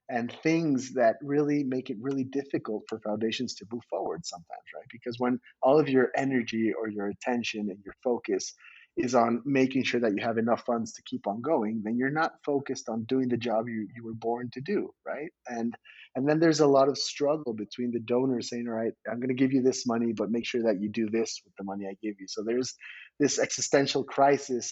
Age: 30-49